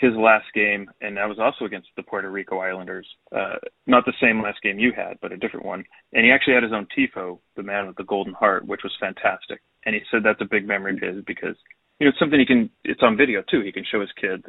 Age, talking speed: 30-49, 270 wpm